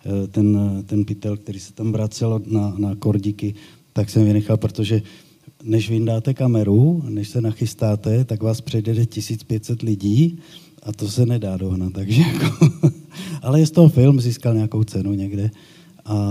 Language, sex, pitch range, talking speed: Slovak, male, 105-130 Hz, 150 wpm